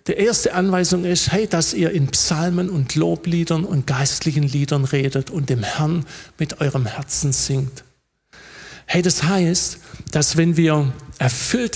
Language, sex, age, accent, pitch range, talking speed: German, male, 50-69, German, 150-185 Hz, 150 wpm